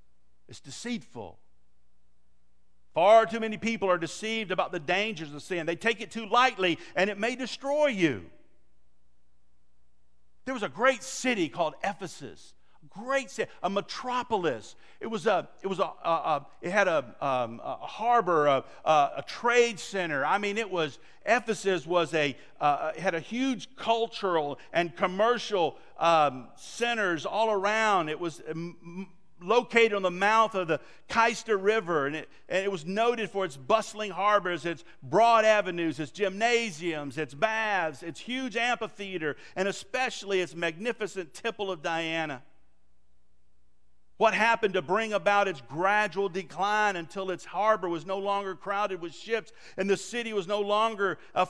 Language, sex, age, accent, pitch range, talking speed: English, male, 50-69, American, 150-220 Hz, 155 wpm